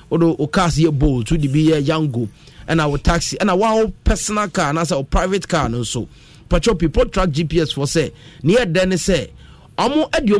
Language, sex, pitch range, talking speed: English, male, 150-215 Hz, 175 wpm